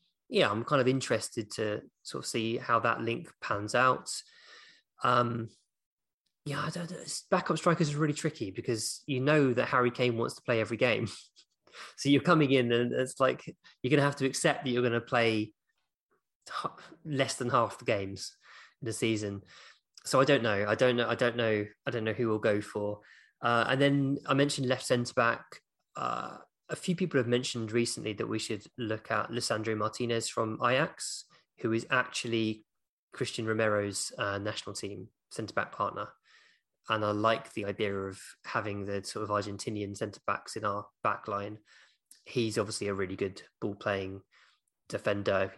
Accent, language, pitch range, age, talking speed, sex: British, English, 105-130 Hz, 20-39, 175 wpm, male